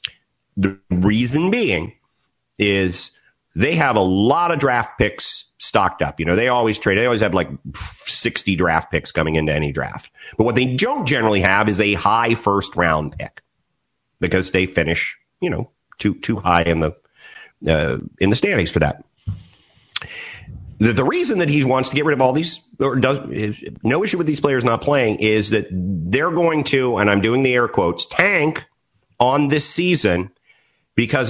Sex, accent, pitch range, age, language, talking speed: male, American, 100-145 Hz, 40-59, English, 180 wpm